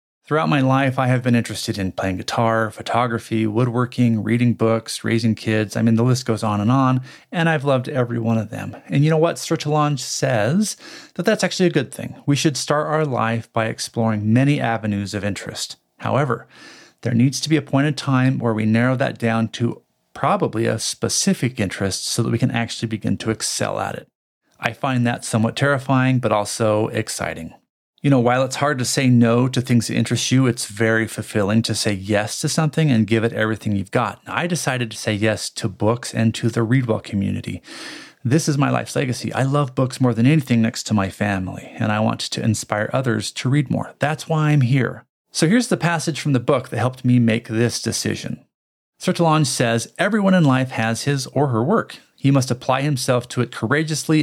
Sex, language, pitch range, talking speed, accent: male, English, 110-140 Hz, 210 wpm, American